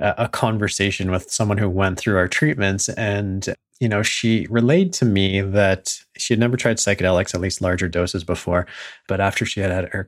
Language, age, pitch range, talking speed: English, 20-39, 90-120 Hz, 195 wpm